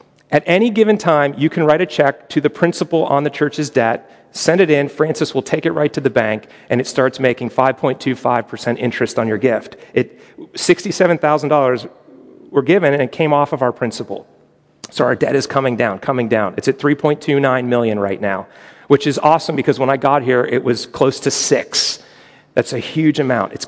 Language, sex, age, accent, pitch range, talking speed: English, male, 40-59, American, 125-155 Hz, 200 wpm